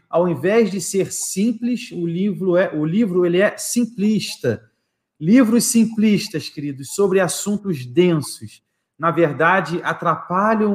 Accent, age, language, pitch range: Brazilian, 40-59, Portuguese, 155-190 Hz